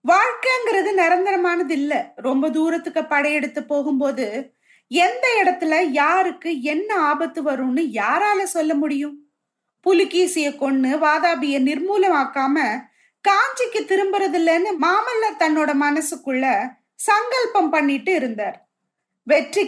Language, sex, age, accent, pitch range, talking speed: Tamil, female, 30-49, native, 290-380 Hz, 90 wpm